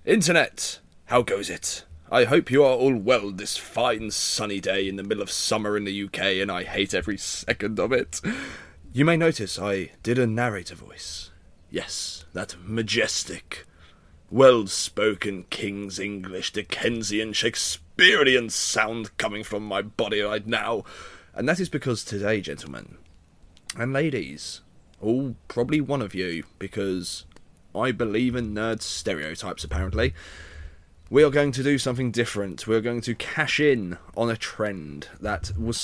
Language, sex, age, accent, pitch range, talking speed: English, male, 30-49, British, 90-115 Hz, 150 wpm